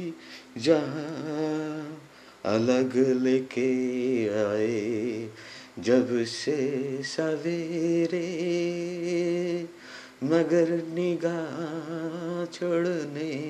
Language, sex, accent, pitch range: Bengali, male, native, 125-165 Hz